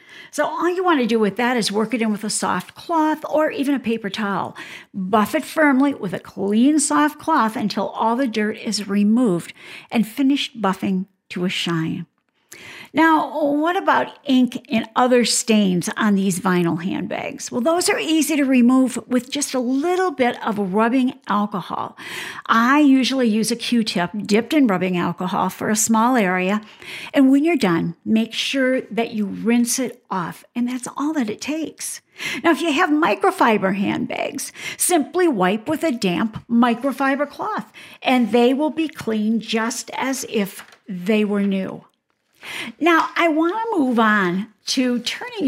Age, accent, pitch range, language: 50-69, American, 205-285 Hz, English